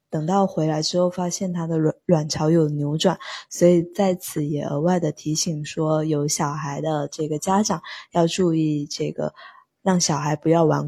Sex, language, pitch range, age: female, Chinese, 155-195 Hz, 20-39